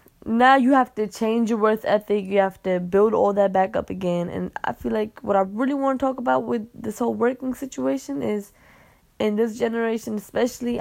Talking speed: 210 wpm